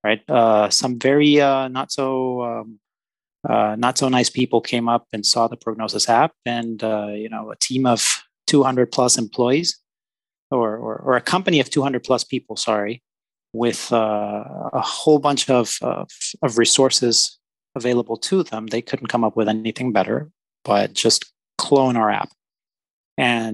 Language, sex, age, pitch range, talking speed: English, male, 30-49, 110-130 Hz, 165 wpm